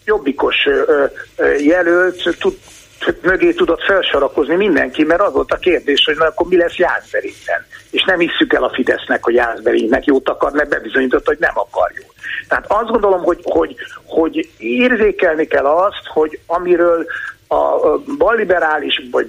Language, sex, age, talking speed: Hungarian, male, 50-69, 150 wpm